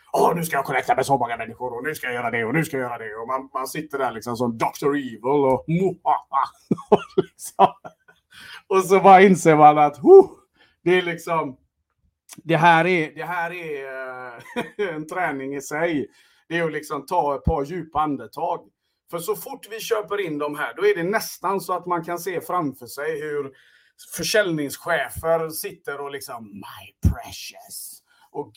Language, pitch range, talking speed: Swedish, 140-195 Hz, 185 wpm